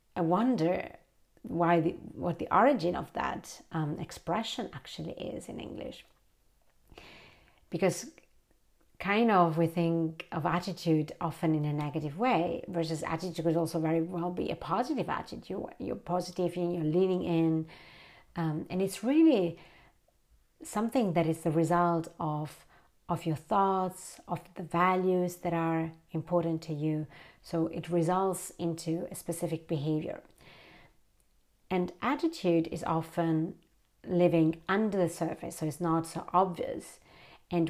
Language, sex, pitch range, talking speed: English, female, 165-185 Hz, 135 wpm